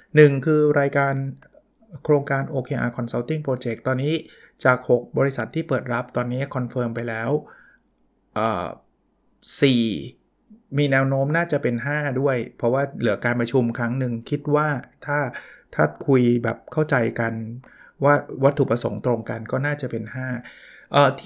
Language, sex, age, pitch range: Thai, male, 20-39, 120-145 Hz